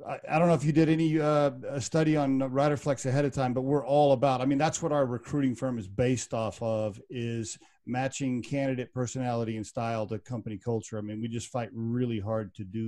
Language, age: English, 40-59